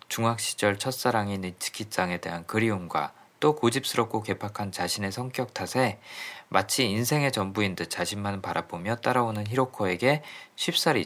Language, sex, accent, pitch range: Korean, male, native, 95-130 Hz